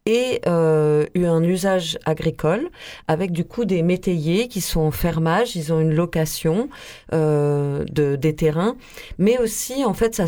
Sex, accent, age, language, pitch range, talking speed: female, French, 40-59, French, 160-215 Hz, 165 wpm